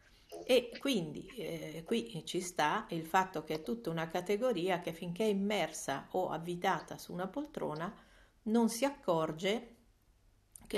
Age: 50-69